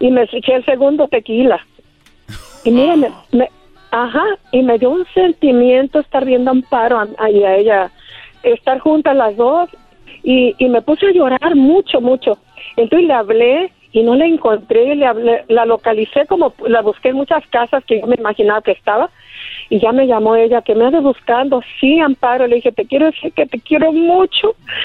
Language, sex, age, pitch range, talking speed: Spanish, female, 50-69, 255-325 Hz, 190 wpm